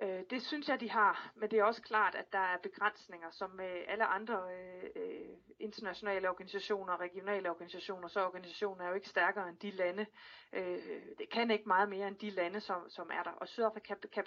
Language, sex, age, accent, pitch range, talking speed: Danish, female, 30-49, native, 185-225 Hz, 200 wpm